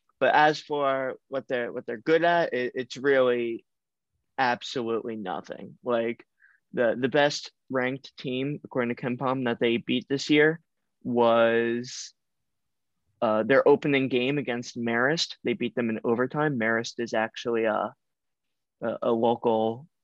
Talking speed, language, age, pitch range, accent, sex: 145 wpm, English, 20-39, 115-135 Hz, American, male